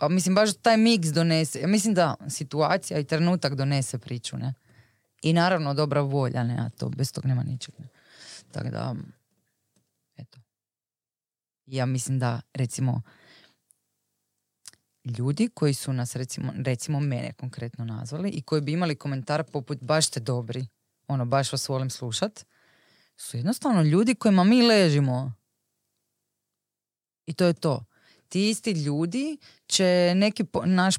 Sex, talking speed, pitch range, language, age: female, 145 wpm, 125-170 Hz, Croatian, 20-39